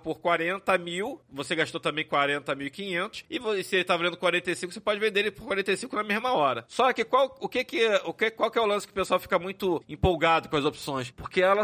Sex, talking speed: male, 260 wpm